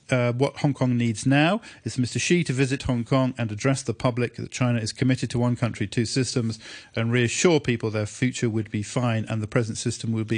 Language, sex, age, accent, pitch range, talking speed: English, male, 40-59, British, 120-155 Hz, 225 wpm